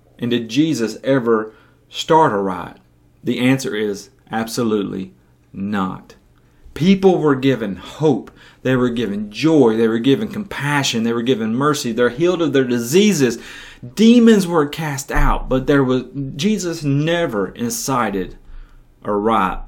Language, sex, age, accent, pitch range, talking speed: English, male, 30-49, American, 120-155 Hz, 135 wpm